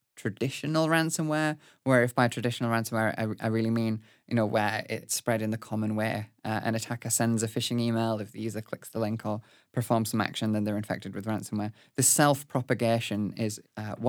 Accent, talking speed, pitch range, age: British, 200 wpm, 110-135 Hz, 20-39